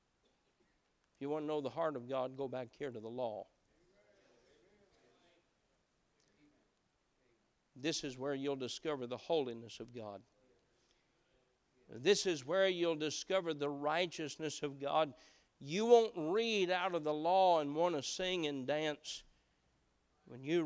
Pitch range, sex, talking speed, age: 135-180 Hz, male, 135 wpm, 50-69